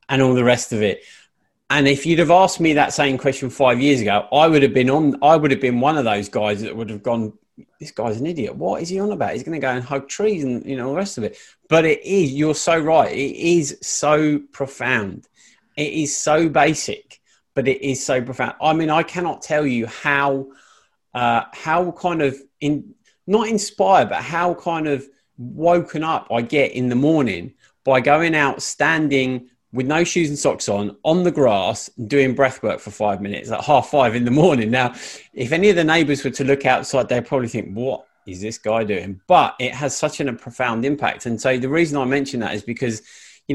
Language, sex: English, male